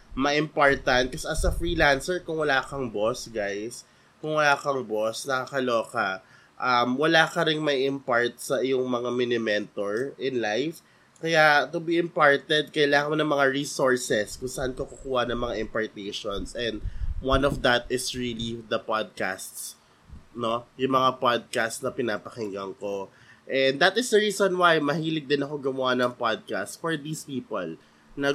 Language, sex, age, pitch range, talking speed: Filipino, male, 20-39, 125-165 Hz, 160 wpm